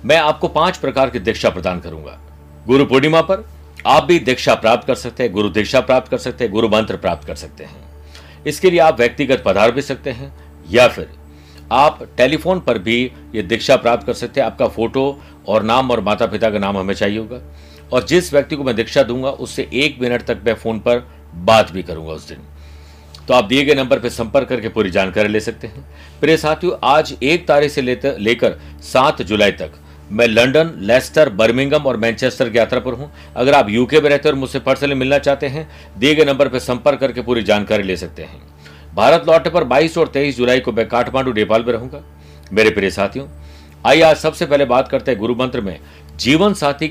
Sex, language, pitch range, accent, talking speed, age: male, Hindi, 90-140 Hz, native, 210 wpm, 50-69